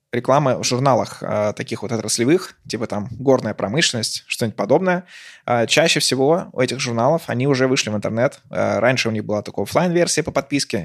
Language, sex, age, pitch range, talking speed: Russian, male, 20-39, 110-135 Hz, 170 wpm